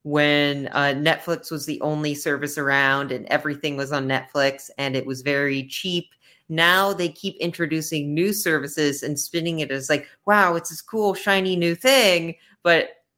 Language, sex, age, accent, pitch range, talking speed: English, female, 30-49, American, 135-160 Hz, 170 wpm